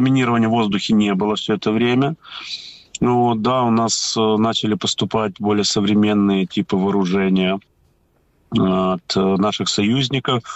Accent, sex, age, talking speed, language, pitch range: native, male, 30-49, 120 wpm, Ukrainian, 95-125 Hz